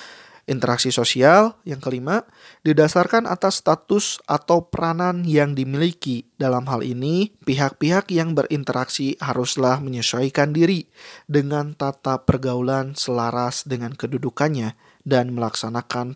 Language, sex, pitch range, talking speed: Indonesian, male, 125-160 Hz, 105 wpm